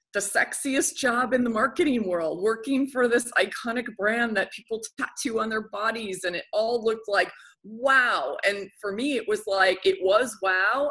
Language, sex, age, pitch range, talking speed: English, female, 30-49, 175-230 Hz, 180 wpm